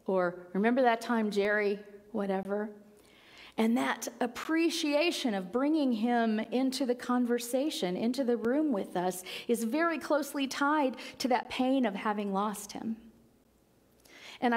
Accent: American